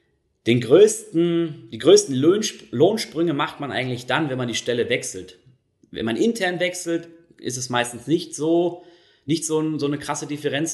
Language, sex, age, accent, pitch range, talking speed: German, male, 20-39, German, 110-145 Hz, 170 wpm